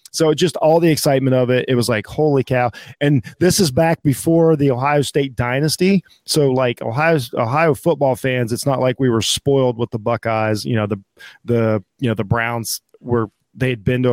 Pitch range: 115-150 Hz